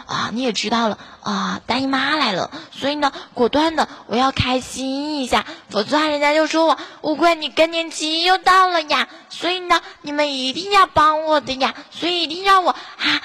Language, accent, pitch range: Chinese, native, 240-305 Hz